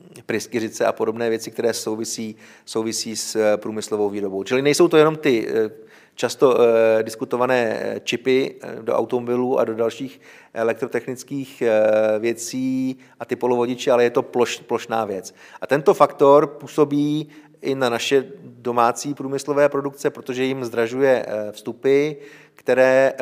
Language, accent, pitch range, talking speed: Czech, native, 115-140 Hz, 125 wpm